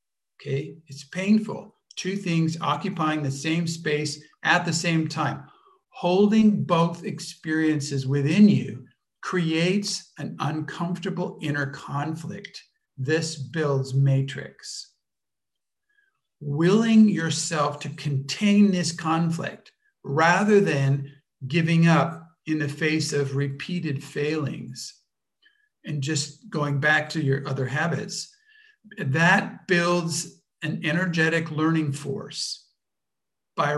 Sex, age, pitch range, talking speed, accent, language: male, 50-69, 150-190 Hz, 100 wpm, American, English